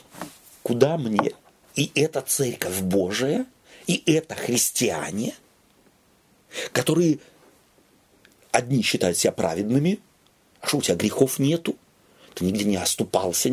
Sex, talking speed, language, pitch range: male, 105 wpm, Russian, 130-200 Hz